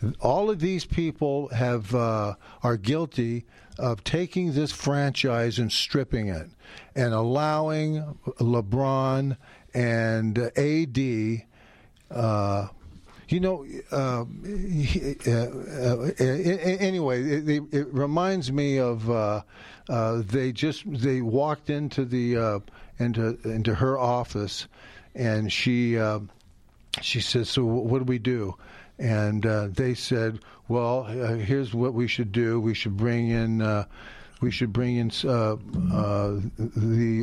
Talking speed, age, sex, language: 120 wpm, 50-69, male, English